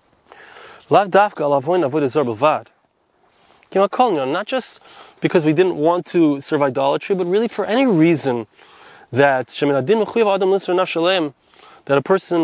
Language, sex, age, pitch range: English, male, 20-39, 145-190 Hz